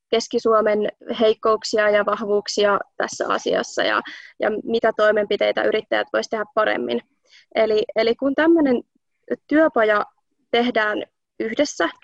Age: 20-39